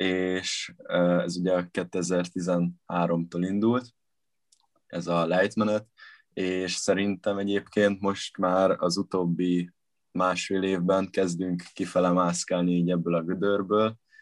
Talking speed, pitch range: 100 wpm, 90-100 Hz